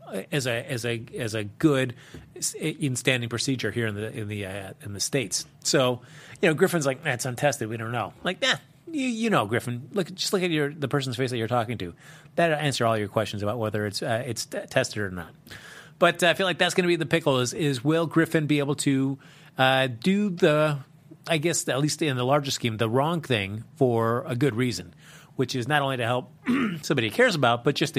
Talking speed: 235 wpm